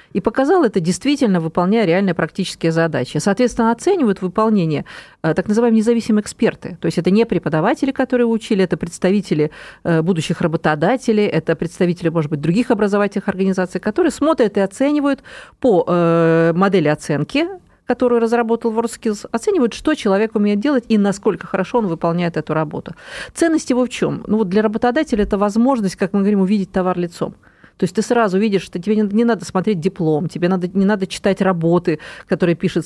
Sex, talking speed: female, 165 wpm